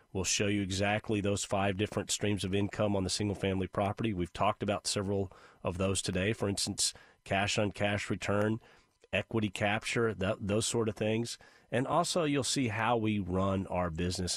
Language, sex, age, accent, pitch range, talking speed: English, male, 40-59, American, 95-110 Hz, 175 wpm